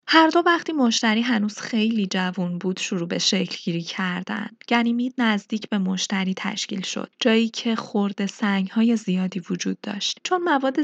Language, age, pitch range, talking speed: Persian, 20-39, 190-235 Hz, 160 wpm